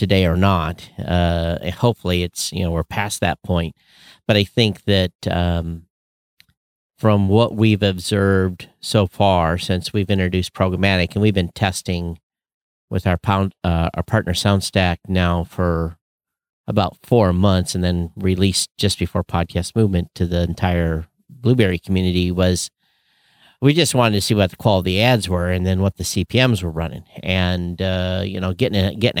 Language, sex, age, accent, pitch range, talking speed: English, male, 50-69, American, 90-105 Hz, 165 wpm